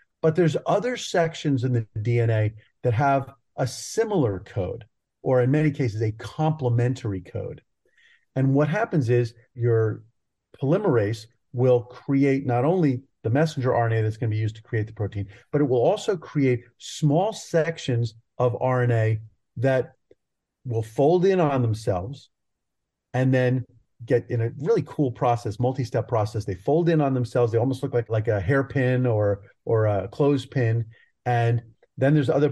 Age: 40-59